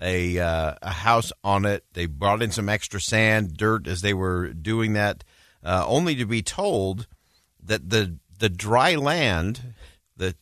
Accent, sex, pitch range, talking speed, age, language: American, male, 90-120 Hz, 165 wpm, 50-69, English